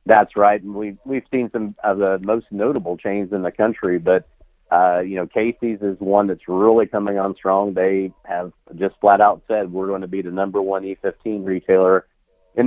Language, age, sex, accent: English, 40-59, male, American